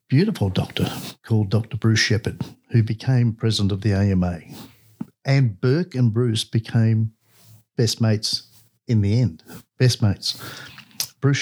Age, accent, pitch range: 50-69, Australian, 105-125 Hz